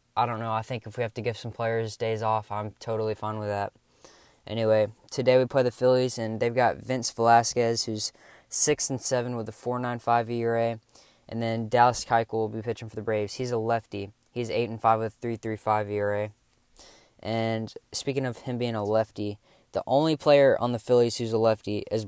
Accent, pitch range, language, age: American, 110-120 Hz, English, 10-29